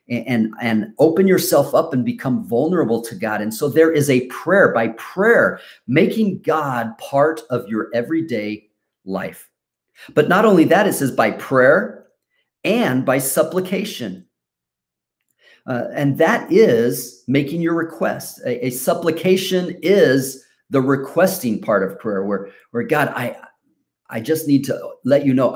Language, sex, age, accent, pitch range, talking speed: English, male, 40-59, American, 125-170 Hz, 150 wpm